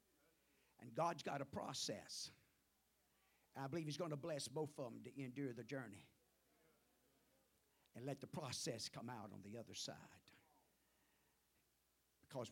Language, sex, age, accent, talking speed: English, male, 50-69, American, 140 wpm